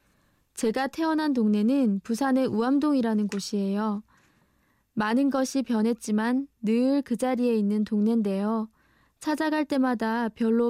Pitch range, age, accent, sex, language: 215-250 Hz, 20-39, native, female, Korean